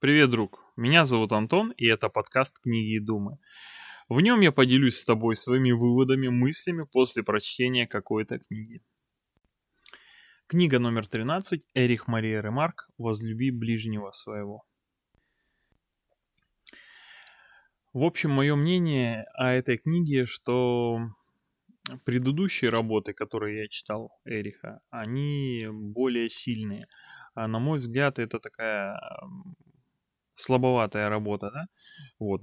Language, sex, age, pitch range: Russian, male, 20-39, 110-130 Hz